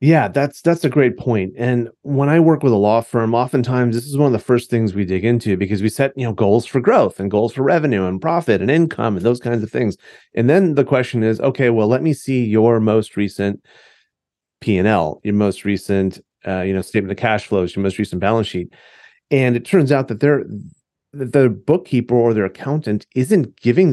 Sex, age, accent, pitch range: male, 30-49, American, 100-125 Hz